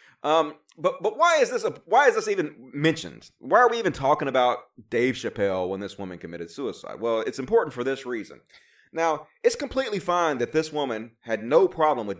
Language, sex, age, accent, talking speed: English, male, 30-49, American, 205 wpm